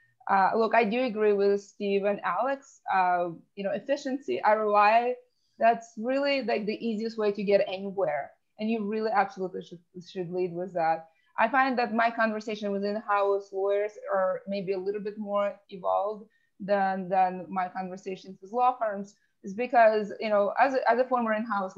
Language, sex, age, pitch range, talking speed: English, female, 20-39, 185-215 Hz, 175 wpm